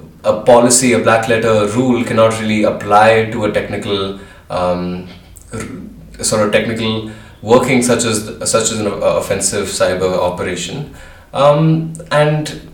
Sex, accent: male, Indian